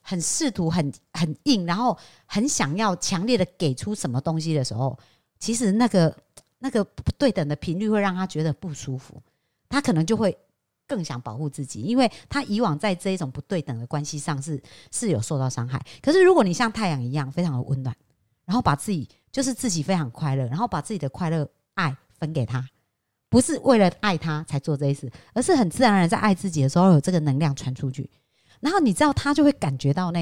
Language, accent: Chinese, American